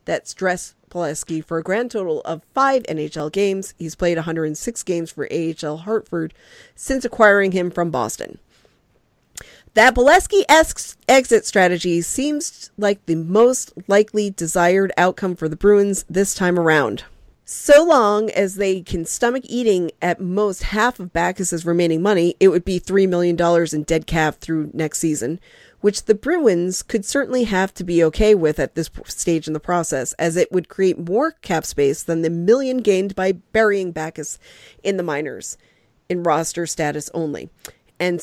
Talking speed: 165 wpm